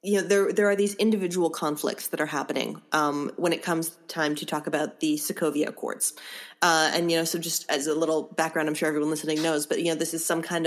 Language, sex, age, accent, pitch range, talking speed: English, female, 20-39, American, 155-180 Hz, 245 wpm